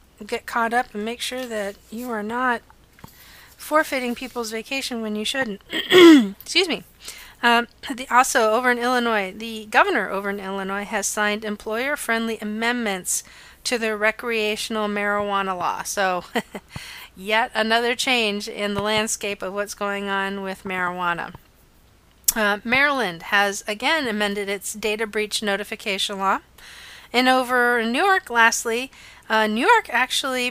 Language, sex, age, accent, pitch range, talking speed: English, female, 40-59, American, 205-250 Hz, 140 wpm